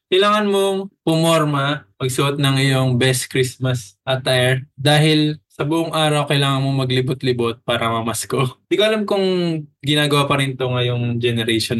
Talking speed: 140 wpm